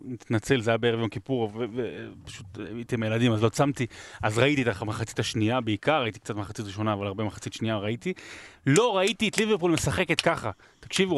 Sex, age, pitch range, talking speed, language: male, 30-49, 120-155 Hz, 200 wpm, Hebrew